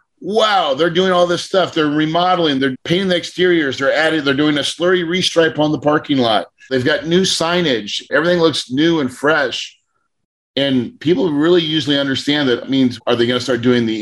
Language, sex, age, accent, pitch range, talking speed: English, male, 40-59, American, 125-160 Hz, 195 wpm